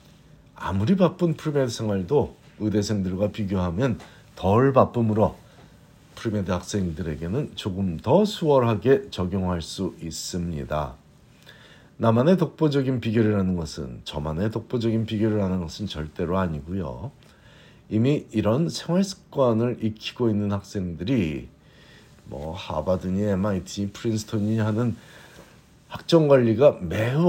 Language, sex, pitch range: Korean, male, 95-125 Hz